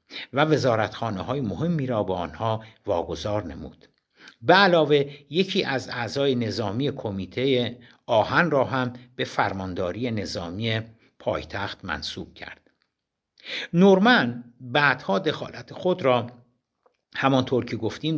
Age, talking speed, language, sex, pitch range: 60-79, 110 wpm, Persian, male, 105-140 Hz